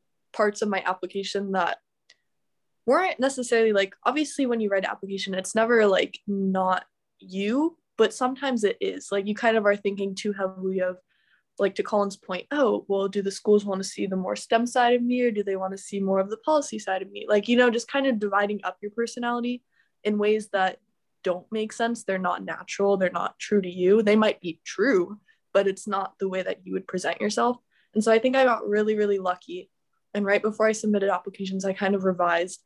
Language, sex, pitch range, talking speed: English, female, 190-225 Hz, 220 wpm